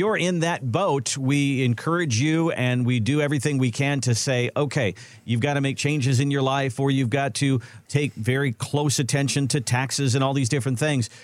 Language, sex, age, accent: English, male, 50-69, American